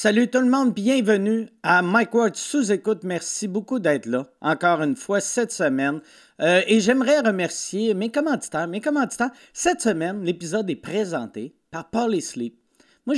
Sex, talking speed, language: male, 155 wpm, French